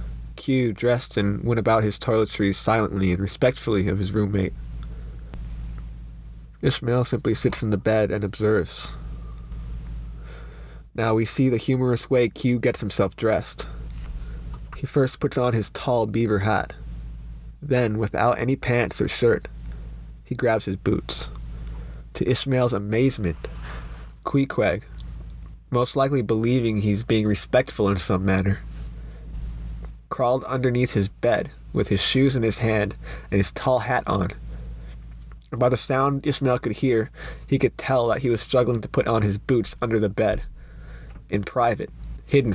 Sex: male